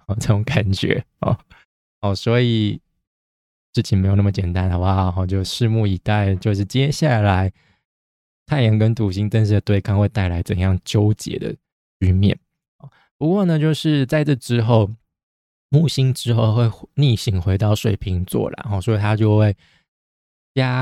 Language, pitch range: Chinese, 100-125 Hz